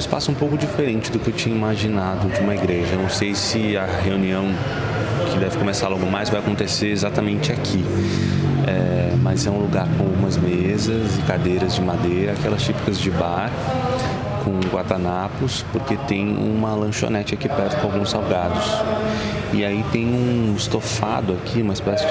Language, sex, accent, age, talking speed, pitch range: Portuguese, male, Brazilian, 20-39, 165 wpm, 95-115 Hz